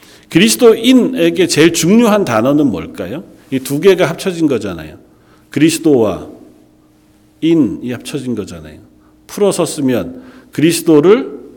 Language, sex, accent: Korean, male, native